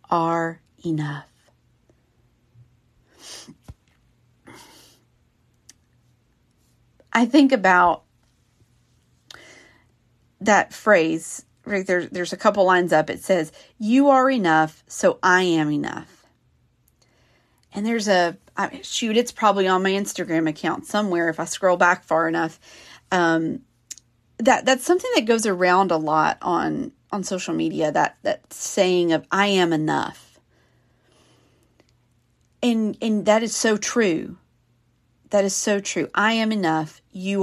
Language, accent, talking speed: English, American, 120 wpm